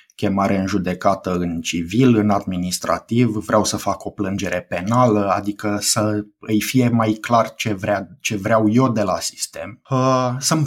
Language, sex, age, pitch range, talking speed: Romanian, male, 20-39, 100-125 Hz, 155 wpm